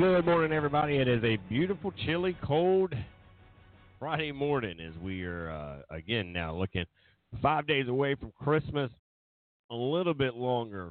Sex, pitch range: male, 100-120 Hz